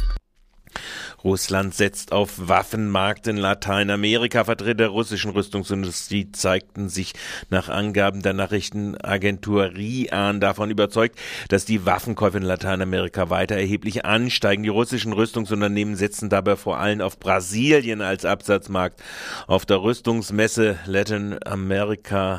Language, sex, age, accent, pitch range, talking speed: German, male, 40-59, German, 95-115 Hz, 115 wpm